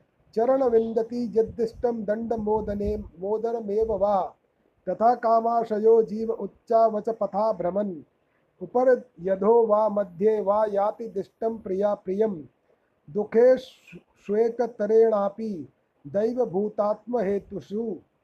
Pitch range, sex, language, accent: 210-245 Hz, male, Hindi, native